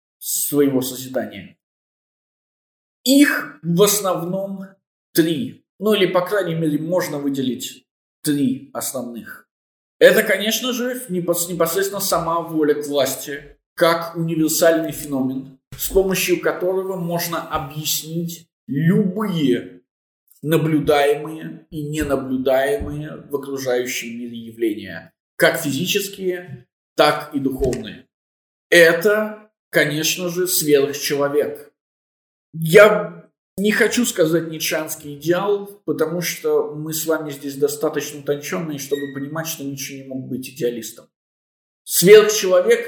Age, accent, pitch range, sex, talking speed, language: 20-39, native, 140-190 Hz, male, 100 wpm, Russian